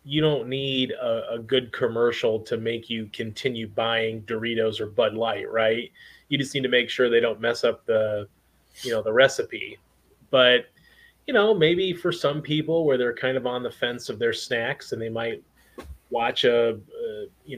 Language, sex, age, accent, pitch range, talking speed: English, male, 30-49, American, 120-145 Hz, 190 wpm